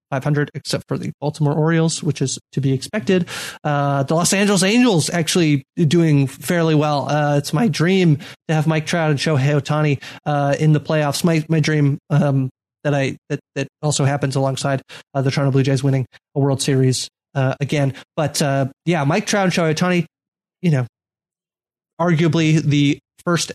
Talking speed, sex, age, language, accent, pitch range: 180 wpm, male, 20-39, English, American, 140-165 Hz